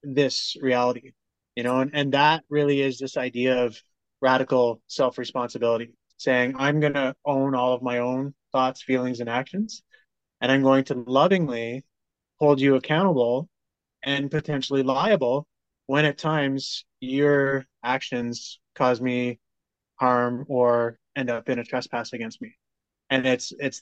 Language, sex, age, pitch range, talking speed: English, male, 20-39, 125-140 Hz, 140 wpm